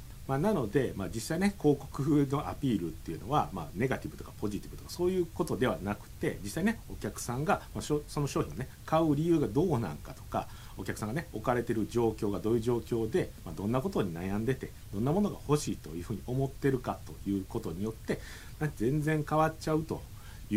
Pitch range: 95-145 Hz